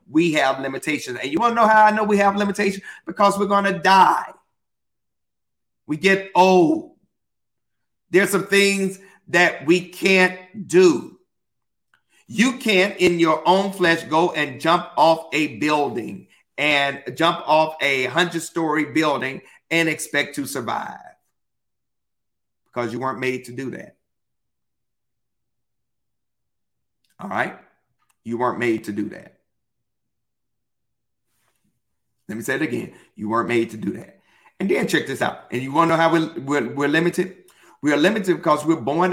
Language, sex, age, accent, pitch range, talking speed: English, male, 50-69, American, 140-190 Hz, 150 wpm